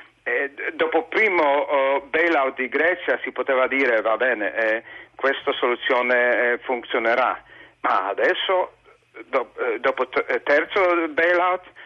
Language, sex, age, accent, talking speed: Italian, male, 50-69, native, 130 wpm